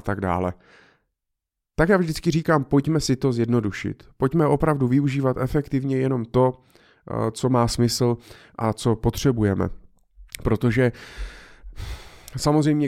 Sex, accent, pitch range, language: male, native, 105-130 Hz, Czech